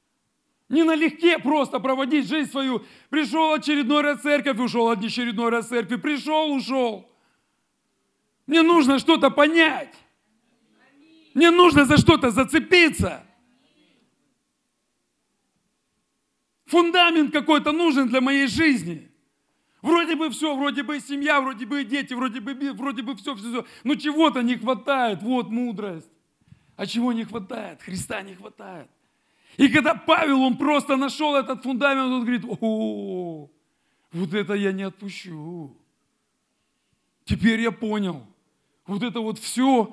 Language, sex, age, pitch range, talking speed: Russian, male, 40-59, 220-290 Hz, 130 wpm